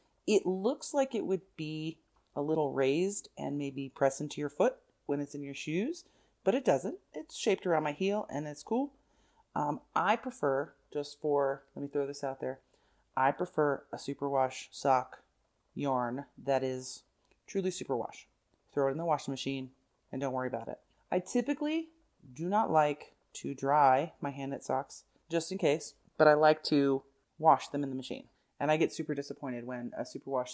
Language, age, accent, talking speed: English, 30-49, American, 185 wpm